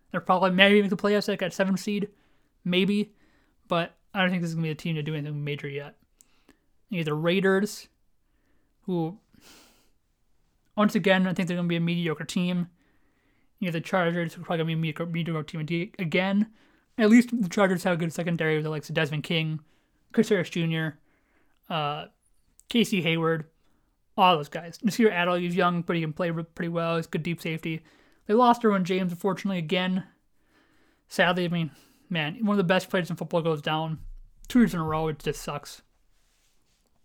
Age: 20-39